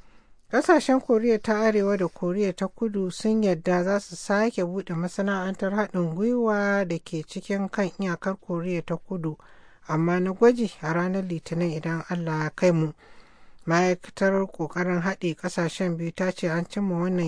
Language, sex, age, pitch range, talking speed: English, male, 60-79, 165-195 Hz, 130 wpm